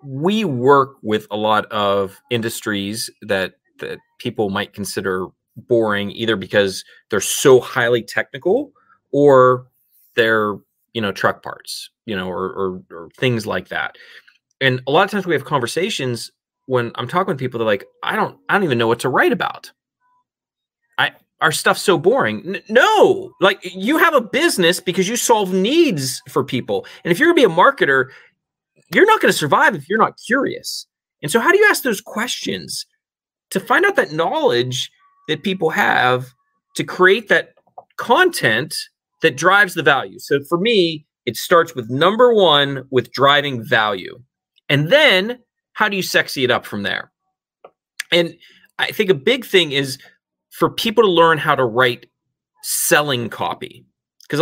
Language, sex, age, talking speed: English, male, 30-49, 170 wpm